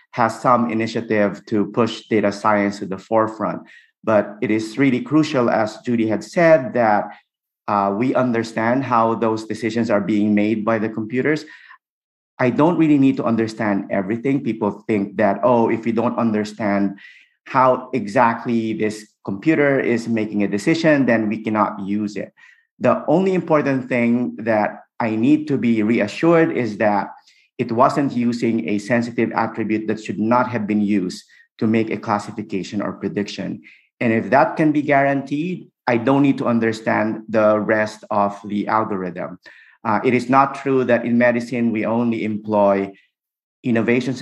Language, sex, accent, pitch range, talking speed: English, male, Filipino, 105-125 Hz, 160 wpm